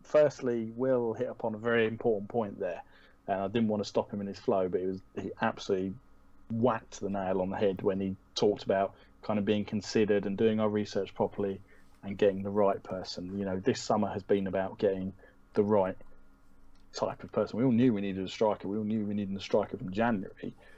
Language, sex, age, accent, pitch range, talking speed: English, male, 30-49, British, 95-110 Hz, 225 wpm